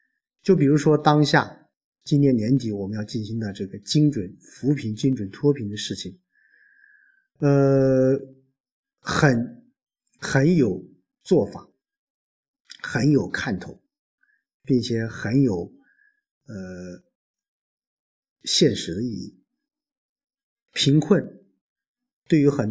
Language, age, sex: Chinese, 50-69, male